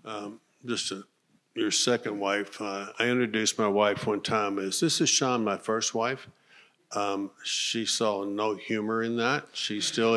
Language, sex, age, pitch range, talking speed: English, male, 50-69, 100-115 Hz, 170 wpm